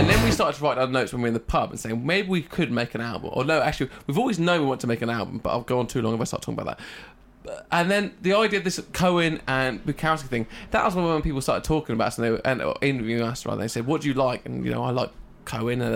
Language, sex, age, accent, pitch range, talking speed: English, male, 20-39, British, 120-160 Hz, 305 wpm